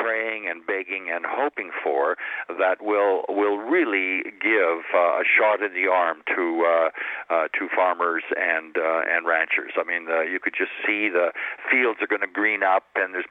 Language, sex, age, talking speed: English, male, 50-69, 190 wpm